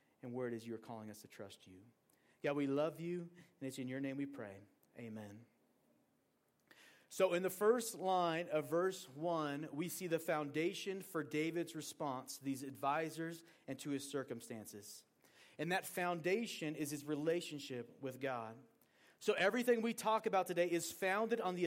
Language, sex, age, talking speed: English, male, 40-59, 170 wpm